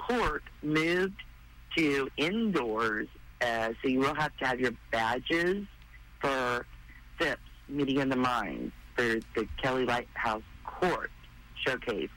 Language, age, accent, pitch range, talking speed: English, 50-69, American, 110-140 Hz, 125 wpm